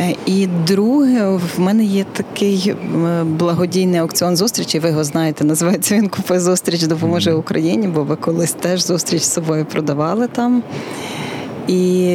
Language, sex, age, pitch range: Ukrainian, female, 20-39, 165-200 Hz